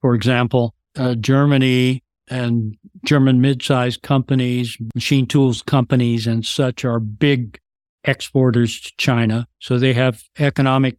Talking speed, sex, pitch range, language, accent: 120 wpm, male, 125-145 Hz, English, American